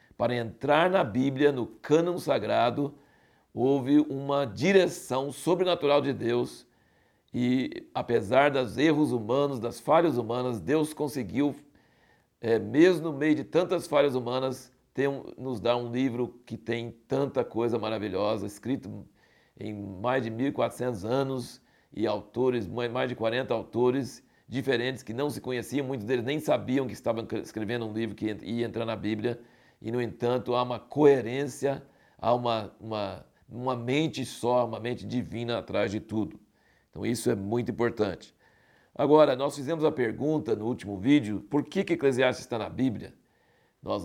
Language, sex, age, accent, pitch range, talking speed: Portuguese, male, 60-79, Brazilian, 115-145 Hz, 155 wpm